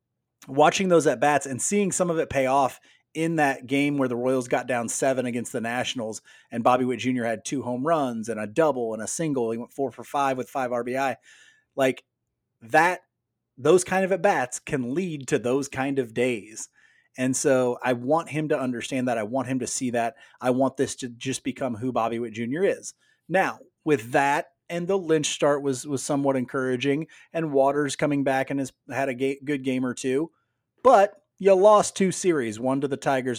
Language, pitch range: English, 120-145 Hz